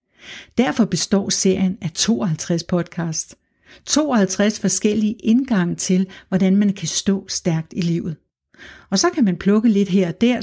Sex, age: female, 60-79